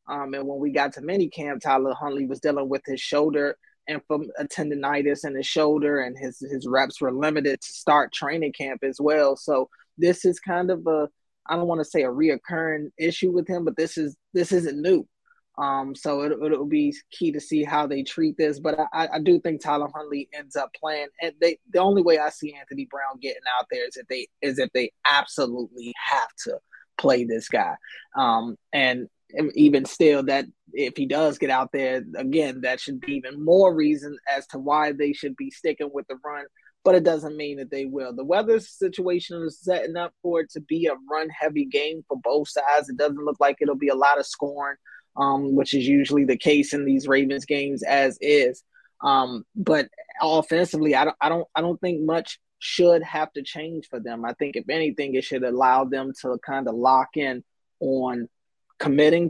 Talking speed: 210 wpm